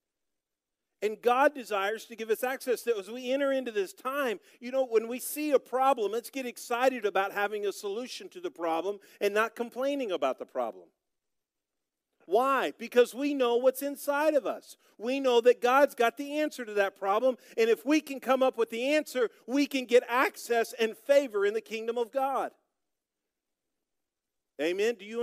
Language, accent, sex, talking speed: English, American, male, 185 wpm